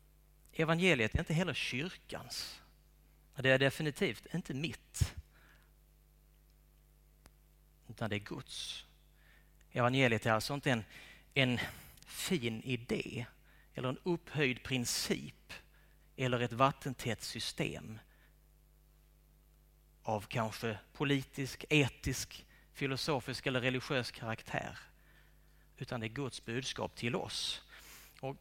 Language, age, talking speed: Swedish, 30-49, 95 wpm